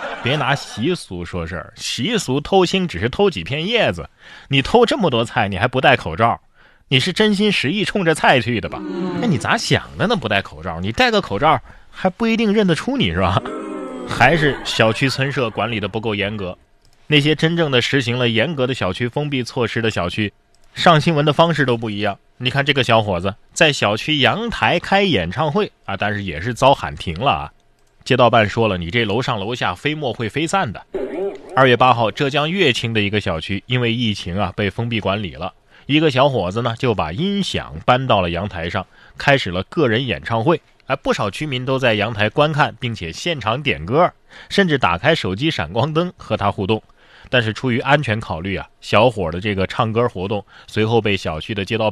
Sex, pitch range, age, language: male, 100-145 Hz, 20-39, Chinese